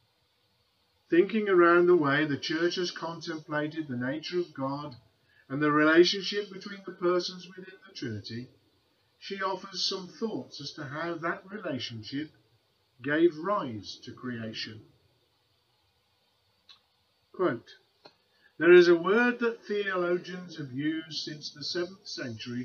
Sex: male